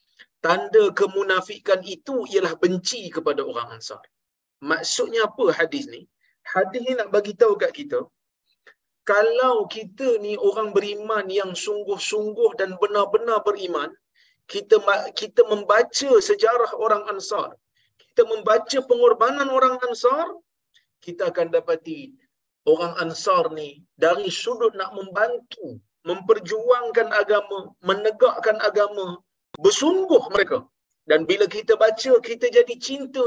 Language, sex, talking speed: Malayalam, male, 115 wpm